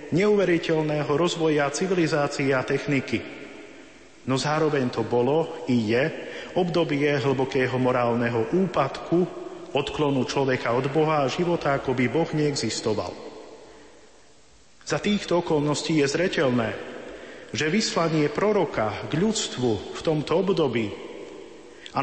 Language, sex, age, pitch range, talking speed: Slovak, male, 40-59, 135-170 Hz, 105 wpm